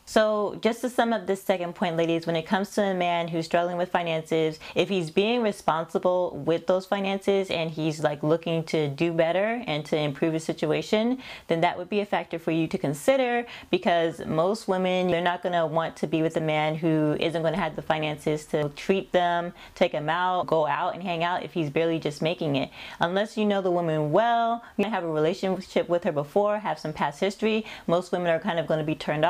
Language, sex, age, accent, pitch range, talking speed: English, female, 20-39, American, 155-190 Hz, 225 wpm